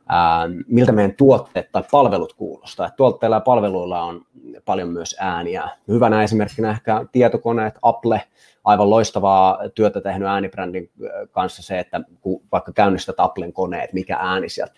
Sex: male